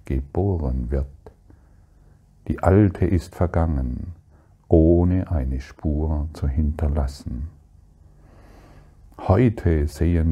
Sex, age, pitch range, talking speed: male, 50-69, 75-90 Hz, 75 wpm